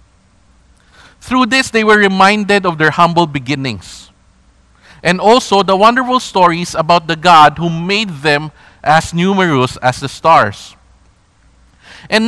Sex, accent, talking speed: male, Filipino, 125 wpm